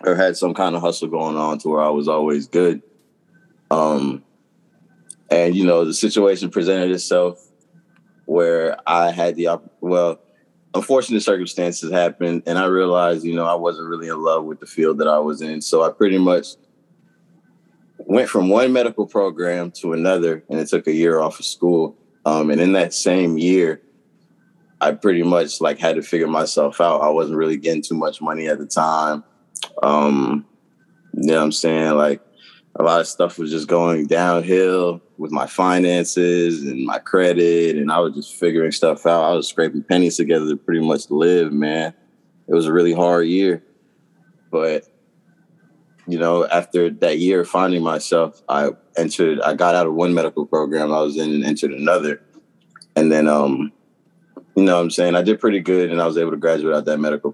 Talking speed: 190 wpm